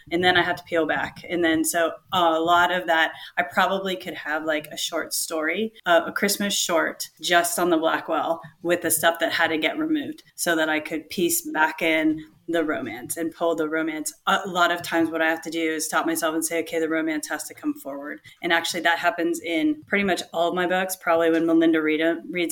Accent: American